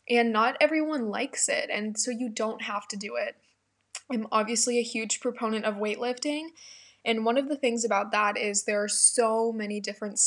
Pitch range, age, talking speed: 210-235 Hz, 10-29, 195 wpm